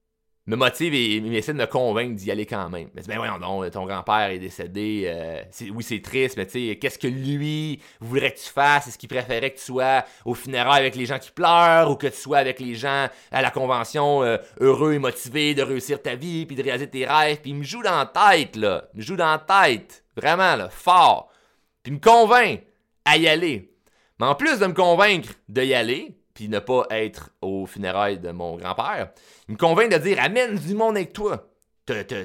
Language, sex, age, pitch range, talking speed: French, male, 30-49, 115-150 Hz, 230 wpm